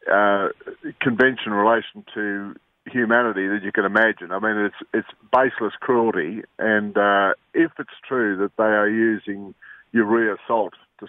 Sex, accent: male, Australian